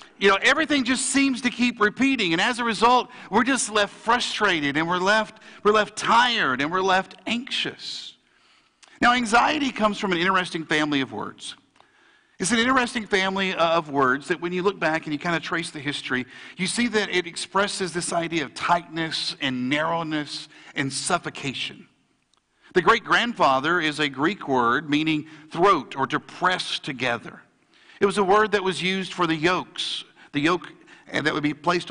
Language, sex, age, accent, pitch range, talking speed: English, male, 50-69, American, 165-220 Hz, 175 wpm